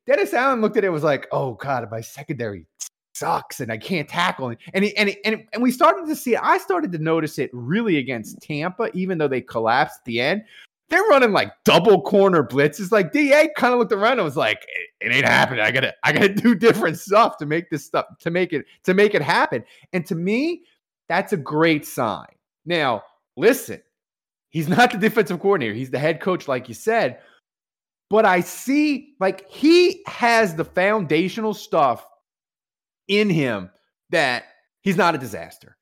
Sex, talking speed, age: male, 200 wpm, 30-49